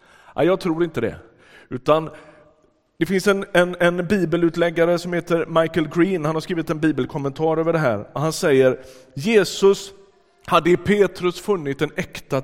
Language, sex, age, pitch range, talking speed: Swedish, male, 30-49, 105-155 Hz, 155 wpm